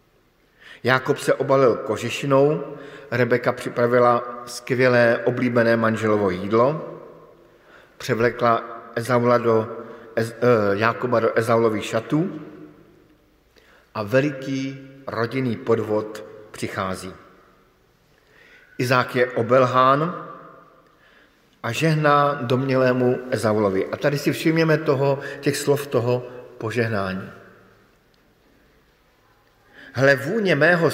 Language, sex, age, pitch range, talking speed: Slovak, male, 50-69, 115-145 Hz, 75 wpm